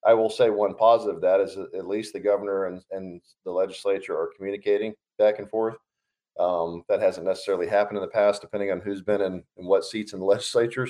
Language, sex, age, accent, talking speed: English, male, 40-59, American, 215 wpm